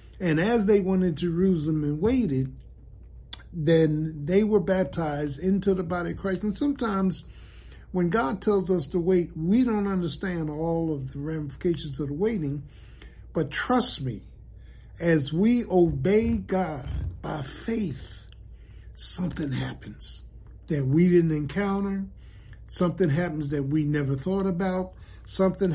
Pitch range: 150-195 Hz